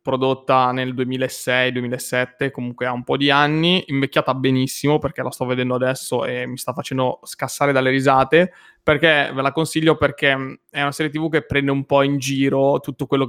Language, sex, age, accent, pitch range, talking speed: Italian, male, 20-39, native, 130-145 Hz, 180 wpm